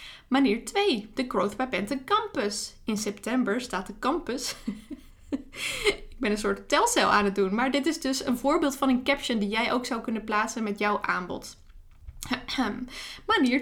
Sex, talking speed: female, 170 wpm